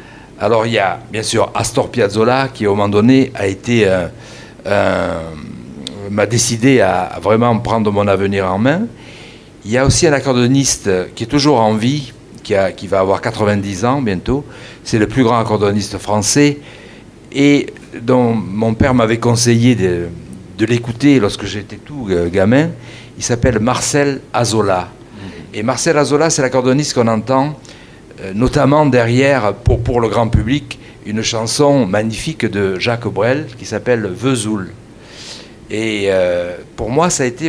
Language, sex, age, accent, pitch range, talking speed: Russian, male, 60-79, French, 105-135 Hz, 155 wpm